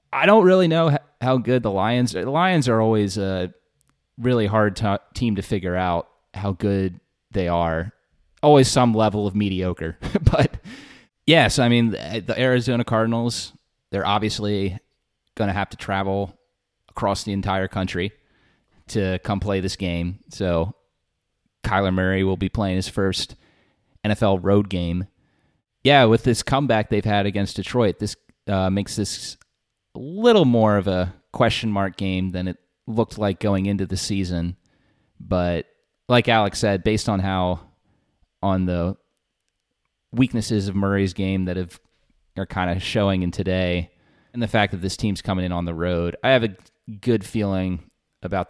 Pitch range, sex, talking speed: 95-115 Hz, male, 160 wpm